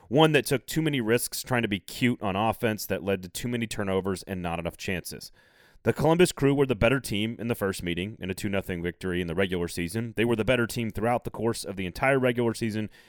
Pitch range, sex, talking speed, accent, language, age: 100-135 Hz, male, 250 wpm, American, English, 30-49